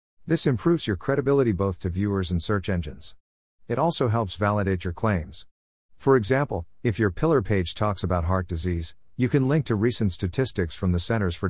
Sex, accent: male, American